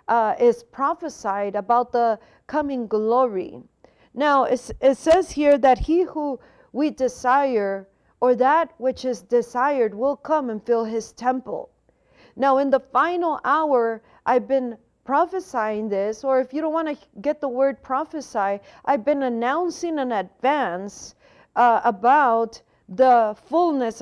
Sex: female